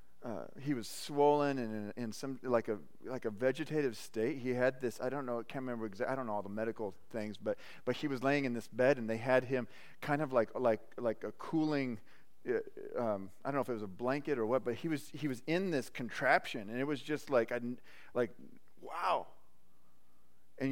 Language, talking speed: English, 230 wpm